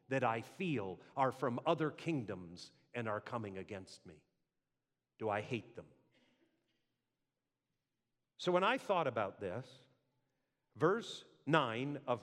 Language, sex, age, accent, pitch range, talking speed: English, male, 50-69, American, 130-180 Hz, 125 wpm